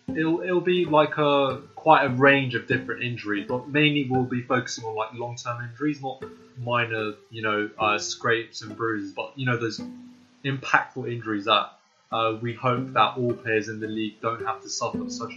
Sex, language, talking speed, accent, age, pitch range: male, English, 190 wpm, British, 20-39, 115-140 Hz